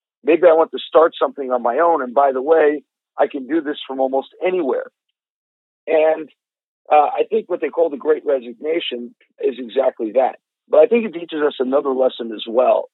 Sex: male